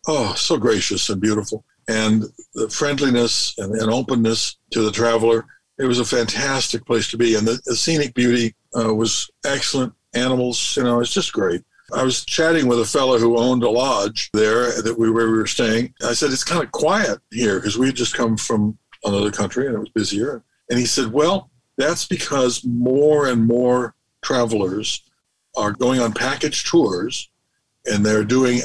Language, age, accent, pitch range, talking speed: English, 60-79, American, 110-125 Hz, 180 wpm